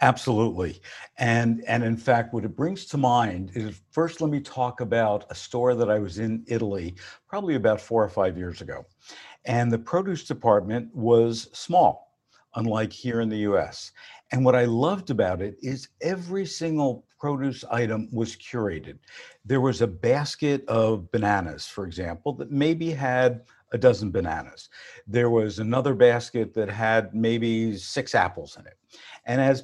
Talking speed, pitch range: 165 wpm, 110-135 Hz